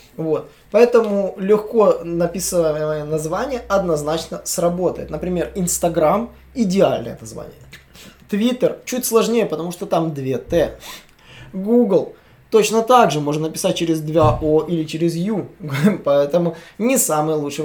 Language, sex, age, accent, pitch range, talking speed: Russian, male, 20-39, native, 155-210 Hz, 125 wpm